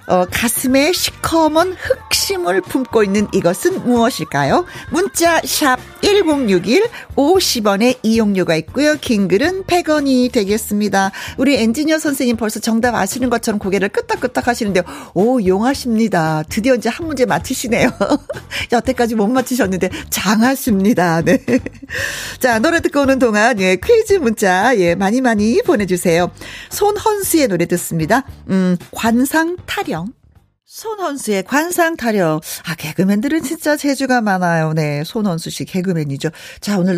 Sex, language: female, Korean